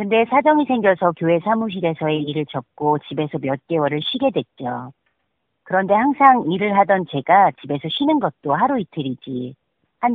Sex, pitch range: female, 140-195 Hz